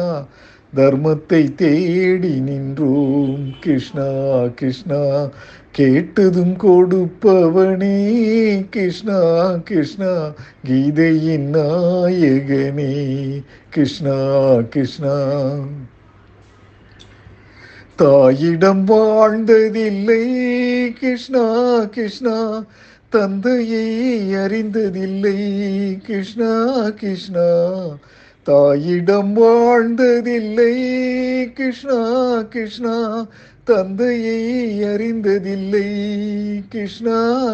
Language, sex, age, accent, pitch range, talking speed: Tamil, male, 50-69, native, 150-215 Hz, 45 wpm